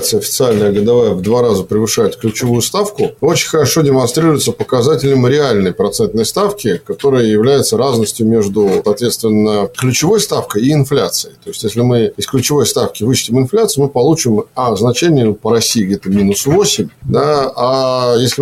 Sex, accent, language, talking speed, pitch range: male, native, Russian, 145 wpm, 120-160 Hz